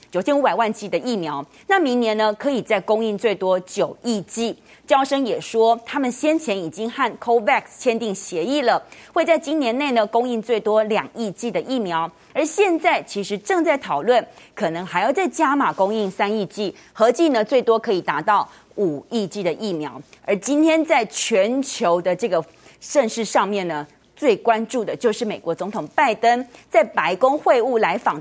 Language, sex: Chinese, female